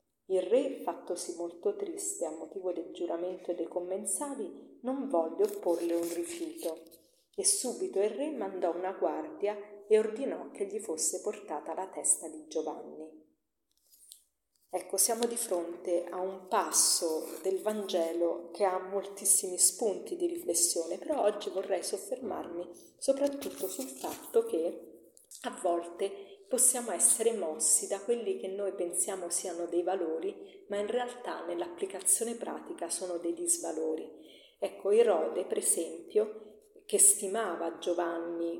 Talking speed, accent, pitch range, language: 130 wpm, native, 170-235 Hz, Italian